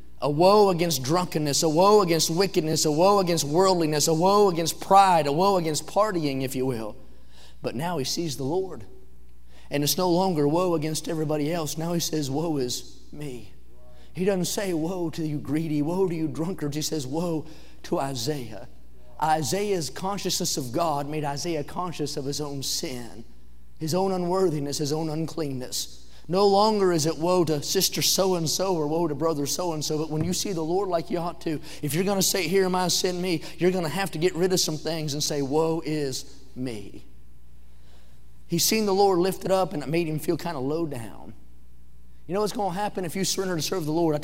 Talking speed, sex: 210 wpm, male